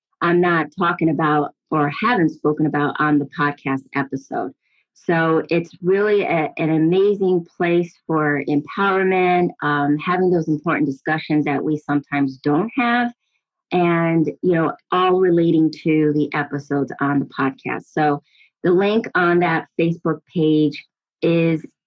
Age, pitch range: 30-49, 155-205 Hz